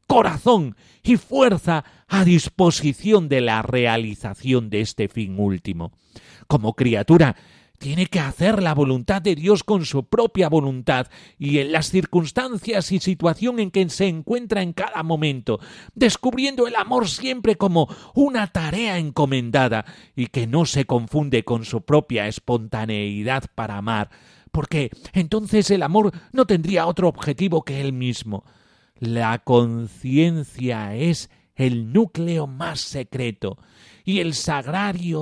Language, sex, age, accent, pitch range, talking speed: Spanish, male, 40-59, Spanish, 120-190 Hz, 135 wpm